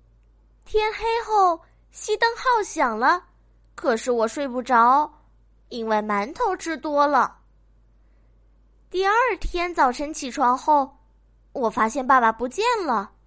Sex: female